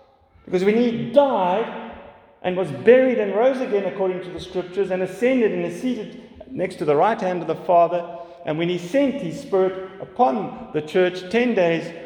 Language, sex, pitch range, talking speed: English, male, 130-200 Hz, 190 wpm